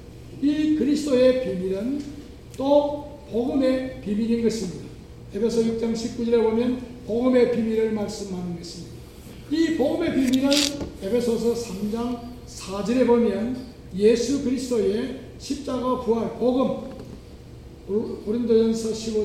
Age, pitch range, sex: 60-79, 210-255 Hz, male